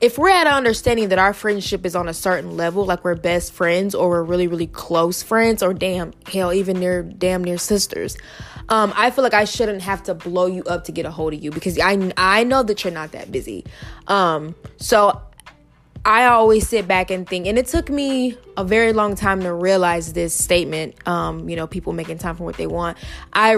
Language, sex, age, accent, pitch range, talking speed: English, female, 20-39, American, 170-200 Hz, 225 wpm